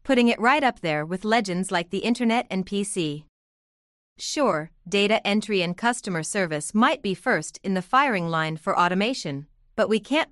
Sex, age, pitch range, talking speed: female, 30-49, 175-235 Hz, 175 wpm